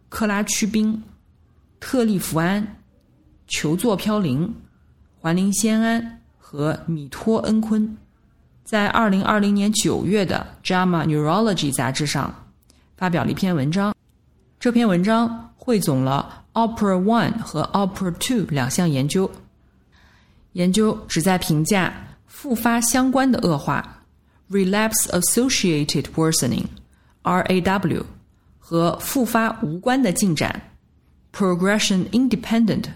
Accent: native